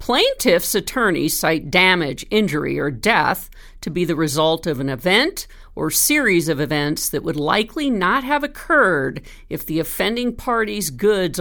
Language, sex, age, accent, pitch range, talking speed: English, female, 50-69, American, 160-215 Hz, 155 wpm